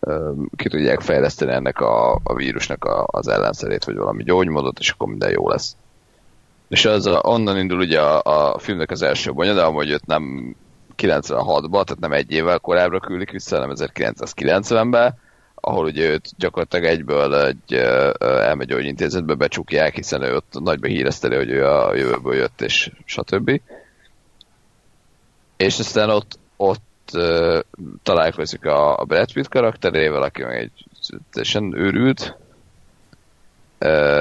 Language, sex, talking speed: Hungarian, male, 140 wpm